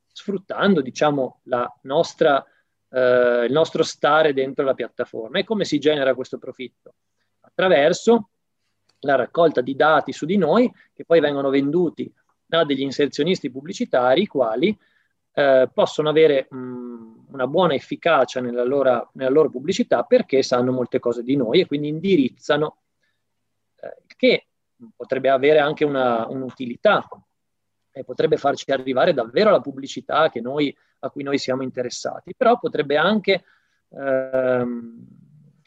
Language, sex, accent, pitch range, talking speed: Italian, male, native, 130-190 Hz, 135 wpm